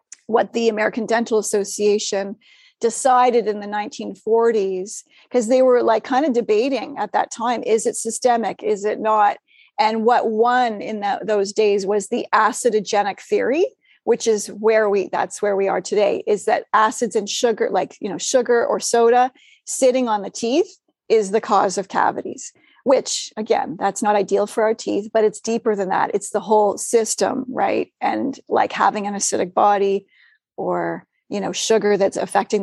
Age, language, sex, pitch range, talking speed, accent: 30-49, English, female, 210-245 Hz, 175 wpm, American